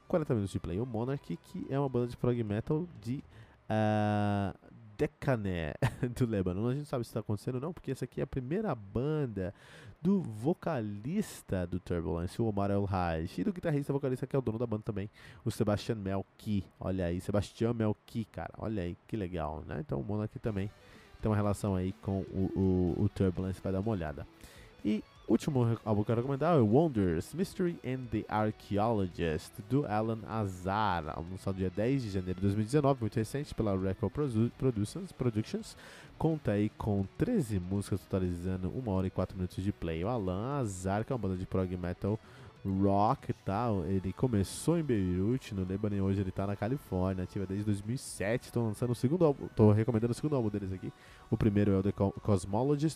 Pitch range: 95-130 Hz